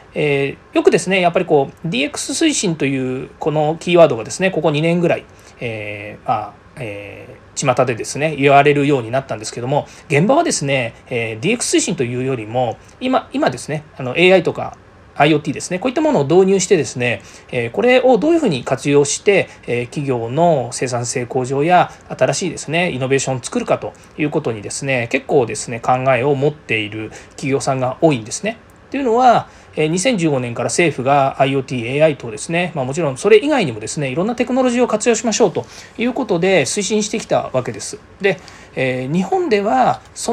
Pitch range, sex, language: 130-205 Hz, male, Japanese